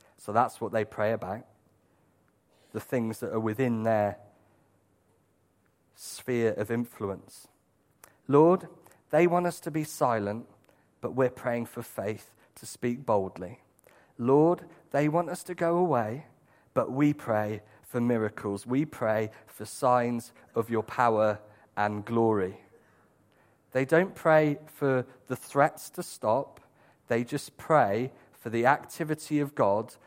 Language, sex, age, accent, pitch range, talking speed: English, male, 40-59, British, 110-150 Hz, 135 wpm